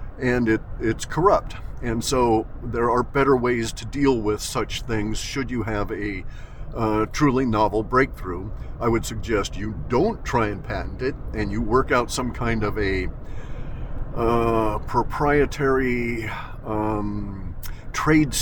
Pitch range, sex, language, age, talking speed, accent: 110-135 Hz, male, English, 50-69, 145 wpm, American